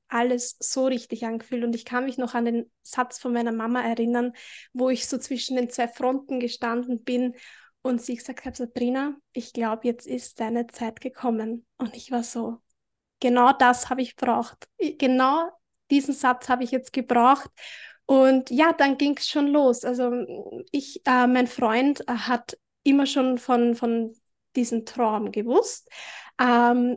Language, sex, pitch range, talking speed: German, female, 235-265 Hz, 165 wpm